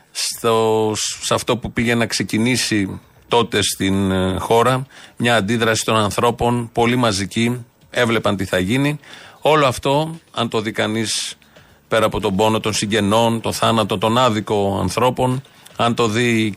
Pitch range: 100-130 Hz